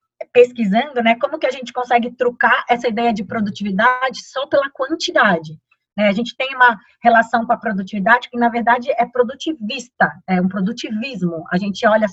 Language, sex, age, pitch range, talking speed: Portuguese, female, 20-39, 205-270 Hz, 175 wpm